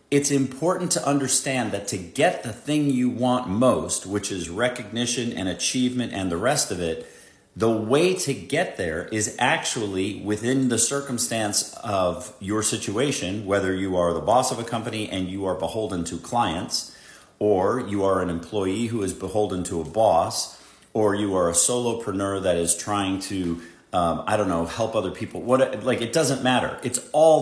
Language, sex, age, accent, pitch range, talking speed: English, male, 40-59, American, 95-125 Hz, 180 wpm